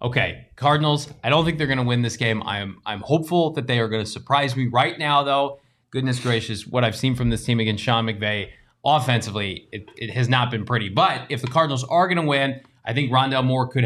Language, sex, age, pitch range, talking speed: English, male, 20-39, 120-145 Hz, 240 wpm